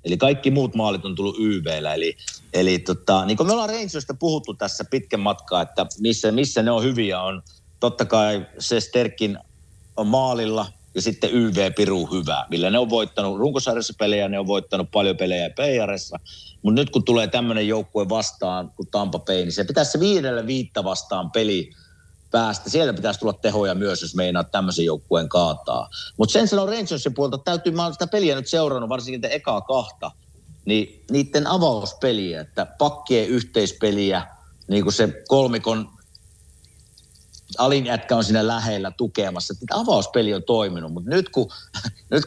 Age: 50-69